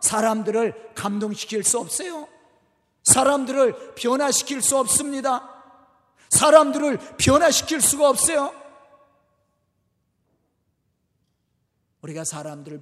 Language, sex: Korean, male